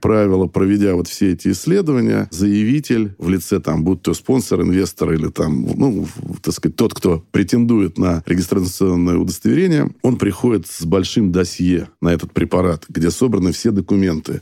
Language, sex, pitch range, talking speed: Russian, male, 90-105 Hz, 145 wpm